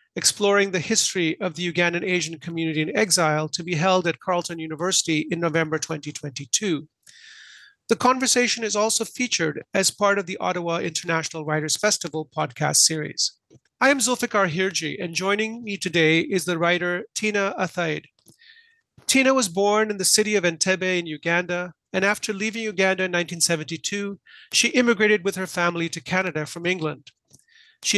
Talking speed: 155 wpm